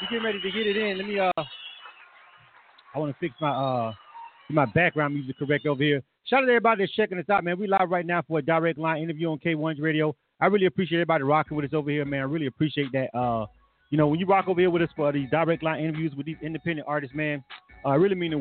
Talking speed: 270 wpm